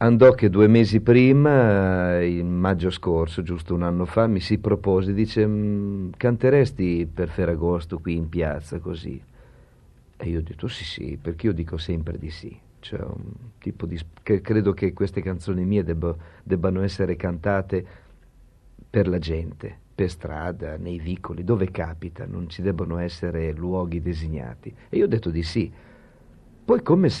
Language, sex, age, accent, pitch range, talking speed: Italian, male, 50-69, native, 85-110 Hz, 165 wpm